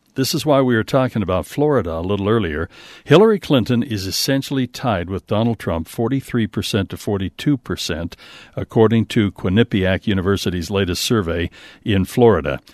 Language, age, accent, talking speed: English, 60-79, American, 140 wpm